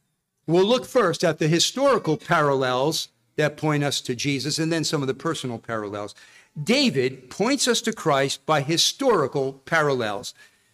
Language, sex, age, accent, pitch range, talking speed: English, male, 50-69, American, 150-195 Hz, 150 wpm